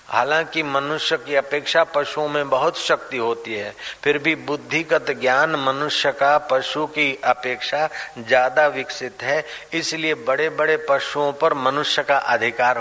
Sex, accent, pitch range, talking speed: male, native, 125-150 Hz, 135 wpm